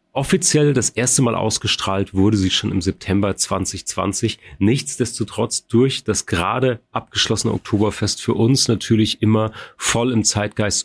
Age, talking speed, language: 30-49, 135 wpm, German